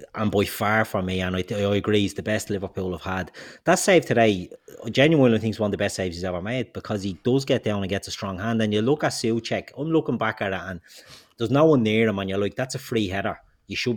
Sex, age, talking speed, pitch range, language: male, 30-49, 285 wpm, 100-125 Hz, English